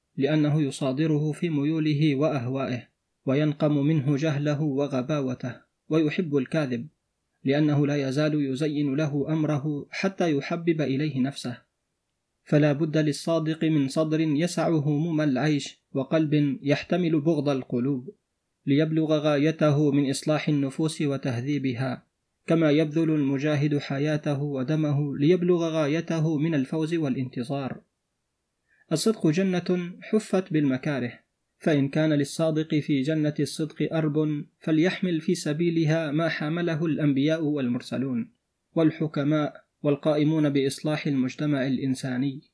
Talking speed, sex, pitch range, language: 100 wpm, male, 140-160 Hz, Arabic